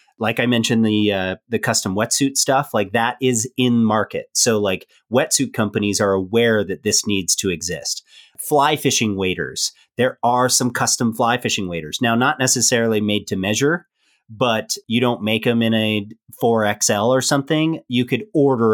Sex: male